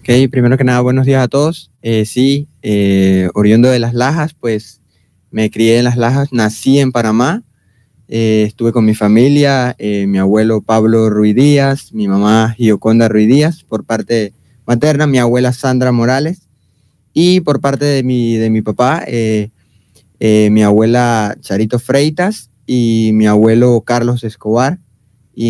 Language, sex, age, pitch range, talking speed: Spanish, male, 20-39, 110-130 Hz, 155 wpm